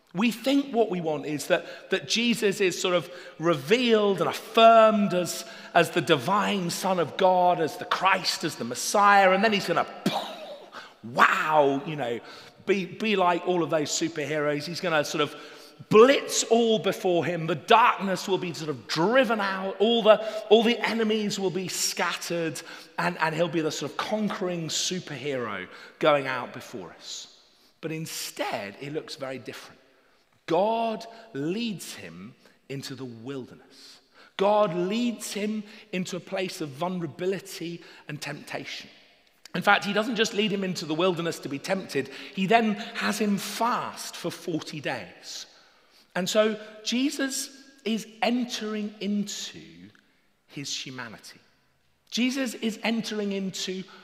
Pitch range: 165-215 Hz